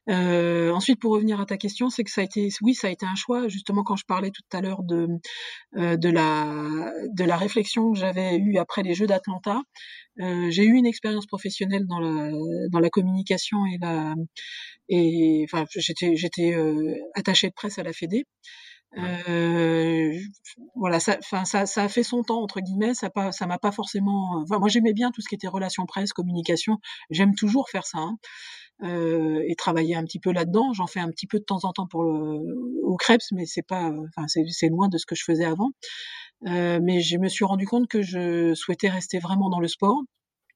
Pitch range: 170-215 Hz